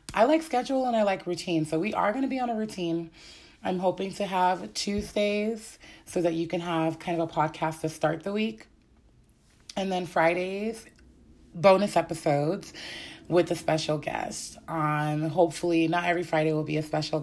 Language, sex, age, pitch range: English, female, 30-49, 150-185 Hz